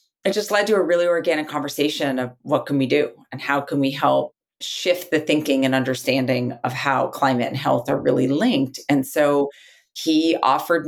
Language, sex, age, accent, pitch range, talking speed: English, female, 30-49, American, 140-180 Hz, 195 wpm